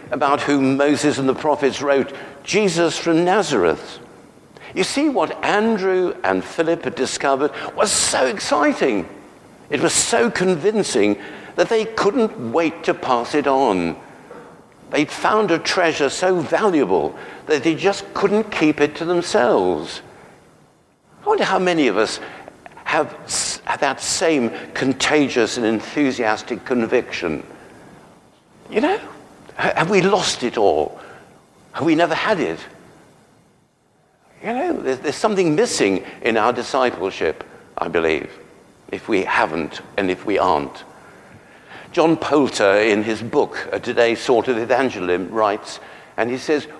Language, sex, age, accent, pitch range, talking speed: English, male, 60-79, British, 125-175 Hz, 130 wpm